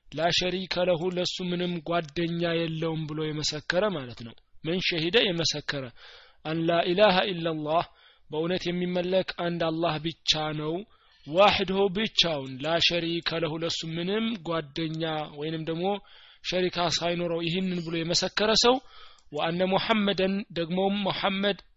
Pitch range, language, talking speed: 165-195 Hz, Amharic, 125 wpm